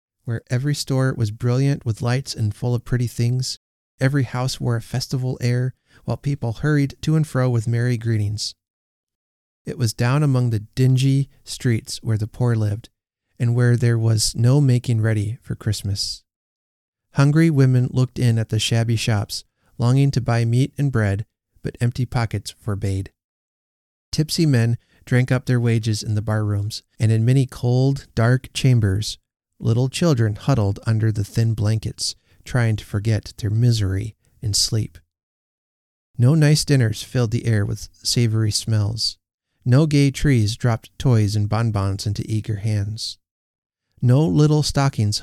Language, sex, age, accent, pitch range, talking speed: English, male, 30-49, American, 105-125 Hz, 155 wpm